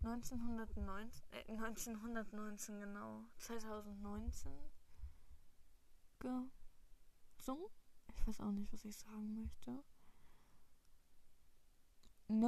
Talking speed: 75 wpm